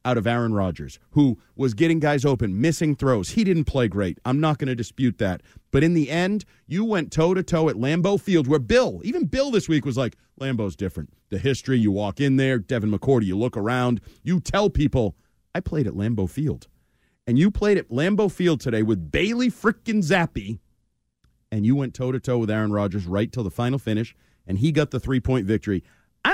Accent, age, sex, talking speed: American, 40-59, male, 205 wpm